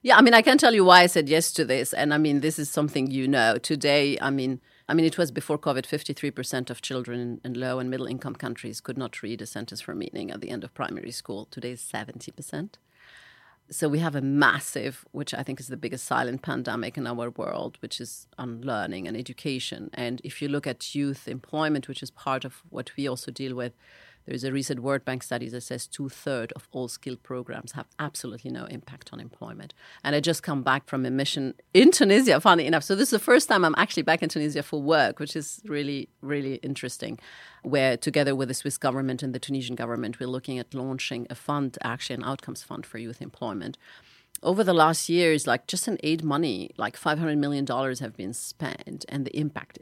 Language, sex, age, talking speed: English, female, 40-59, 220 wpm